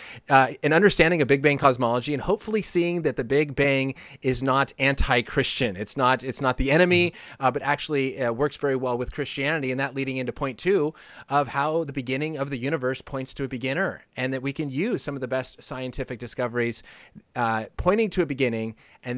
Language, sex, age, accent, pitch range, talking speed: English, male, 30-49, American, 130-150 Hz, 205 wpm